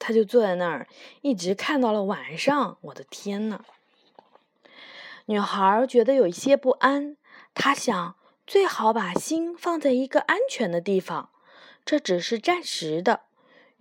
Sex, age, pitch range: female, 20-39, 195-280 Hz